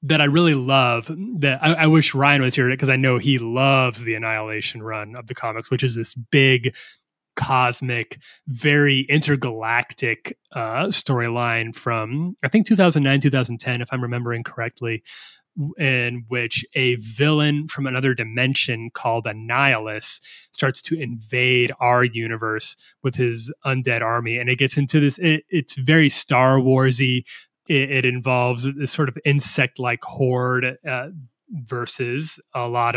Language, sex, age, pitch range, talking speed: English, male, 20-39, 120-145 Hz, 145 wpm